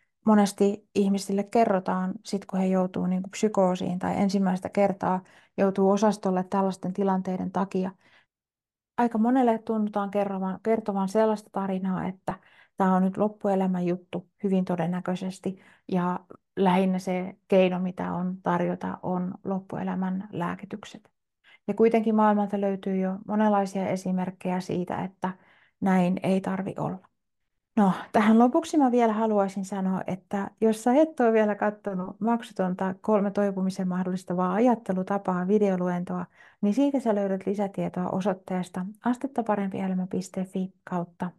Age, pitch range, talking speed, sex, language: 30-49, 185-215 Hz, 120 wpm, female, Finnish